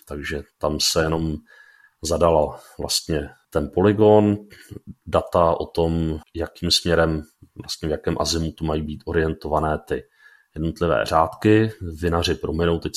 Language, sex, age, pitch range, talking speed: Czech, male, 40-59, 80-95 Hz, 125 wpm